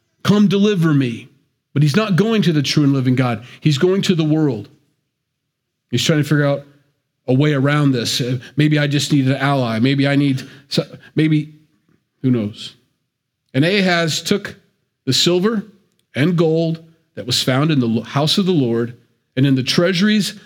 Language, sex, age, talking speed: English, male, 40-59, 175 wpm